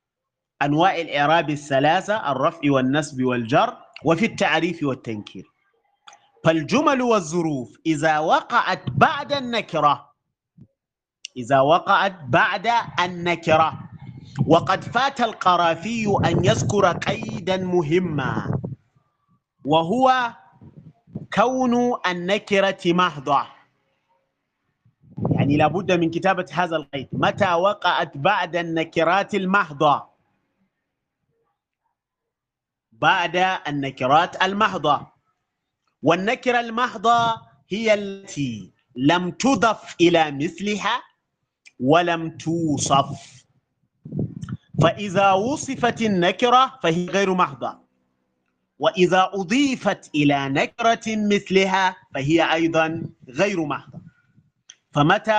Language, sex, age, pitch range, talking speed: English, male, 30-49, 150-200 Hz, 75 wpm